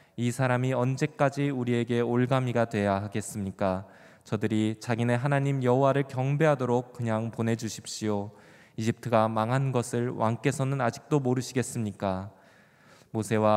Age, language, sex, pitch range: 20-39, Korean, male, 105-125 Hz